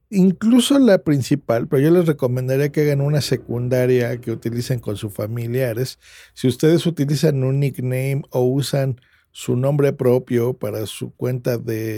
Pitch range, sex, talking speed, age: 120-155 Hz, male, 150 wpm, 50-69